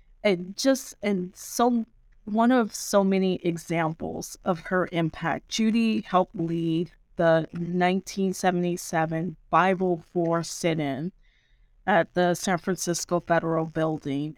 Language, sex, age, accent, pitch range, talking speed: English, female, 30-49, American, 165-195 Hz, 105 wpm